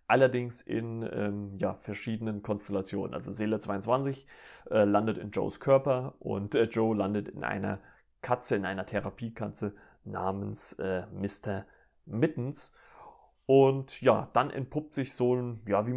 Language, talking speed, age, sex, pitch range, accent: German, 140 wpm, 30-49, male, 100-125 Hz, German